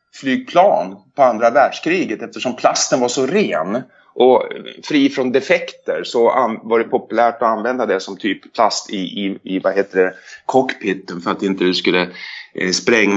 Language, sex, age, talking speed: Swedish, male, 30-49, 160 wpm